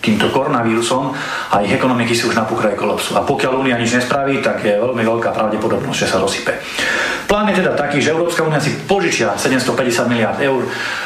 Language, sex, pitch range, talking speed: Slovak, male, 115-135 Hz, 185 wpm